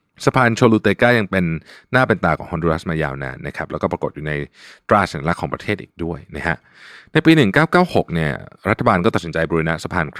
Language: Thai